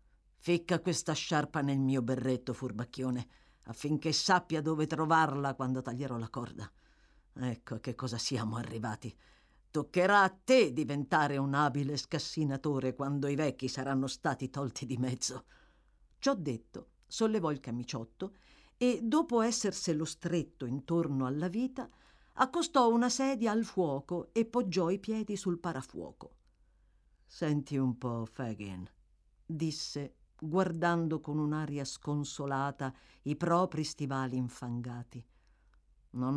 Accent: native